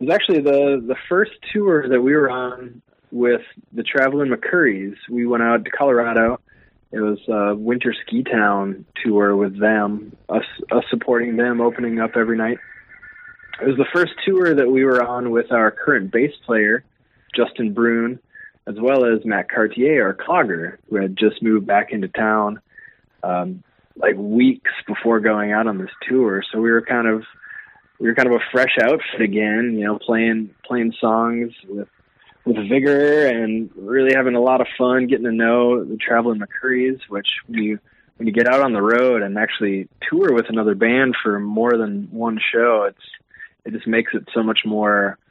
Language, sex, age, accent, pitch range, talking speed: English, male, 20-39, American, 105-125 Hz, 185 wpm